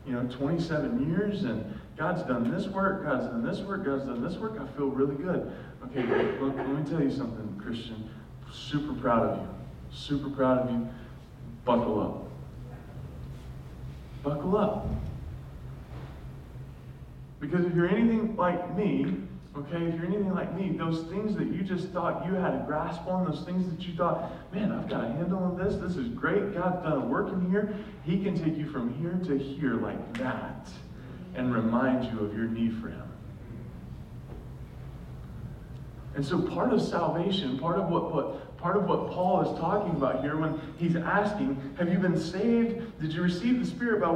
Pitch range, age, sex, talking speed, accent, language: 140-205 Hz, 20-39, male, 180 wpm, American, English